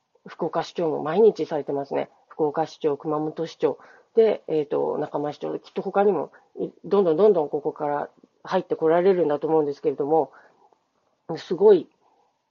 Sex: female